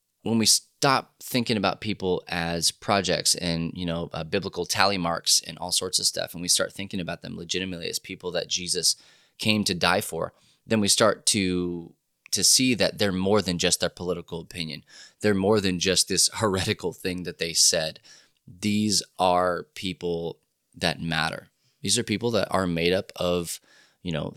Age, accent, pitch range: 20-39, American, 85-100 Hz